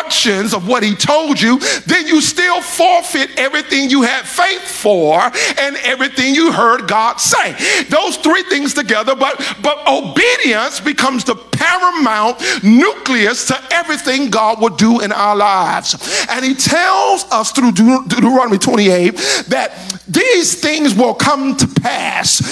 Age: 50-69